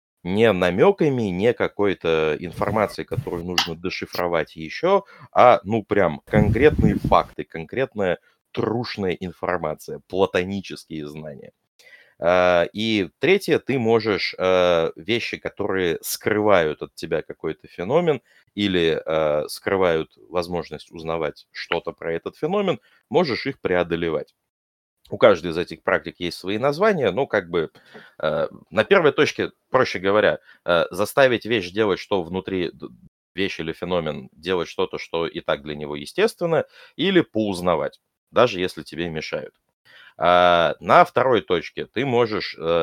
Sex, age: male, 30-49